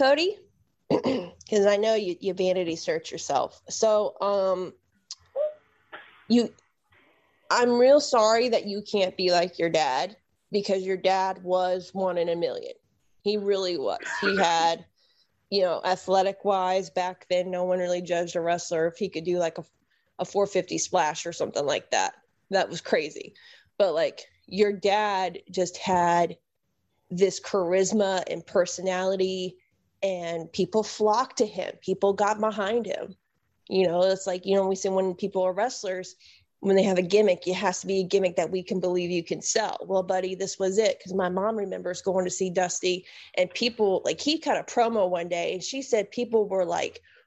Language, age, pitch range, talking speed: English, 20-39, 180-210 Hz, 180 wpm